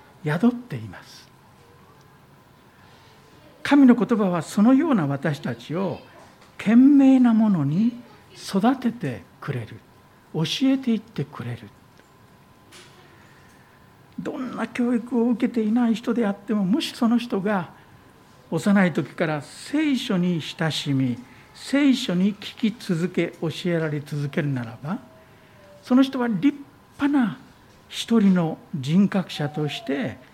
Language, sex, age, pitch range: Japanese, male, 60-79, 140-230 Hz